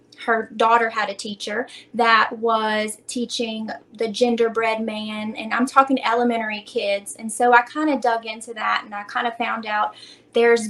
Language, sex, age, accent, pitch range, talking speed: English, female, 20-39, American, 215-245 Hz, 175 wpm